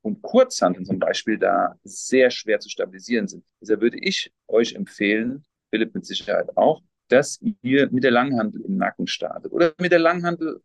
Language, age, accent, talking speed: German, 40-59, German, 180 wpm